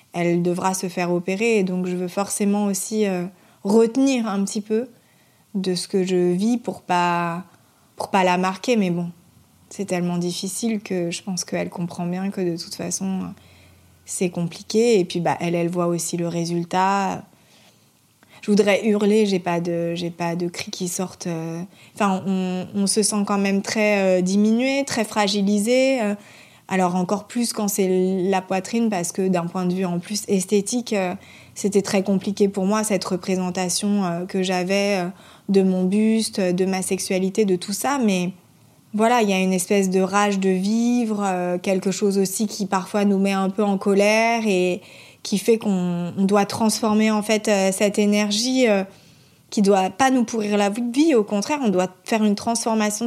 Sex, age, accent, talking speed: female, 20-39, French, 175 wpm